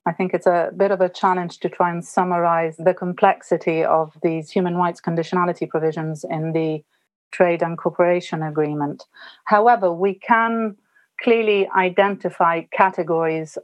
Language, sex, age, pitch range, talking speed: English, female, 40-59, 165-195 Hz, 140 wpm